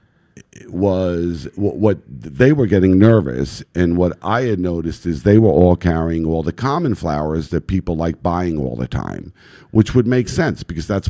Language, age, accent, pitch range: English, 50-69, American, 85-105 Hz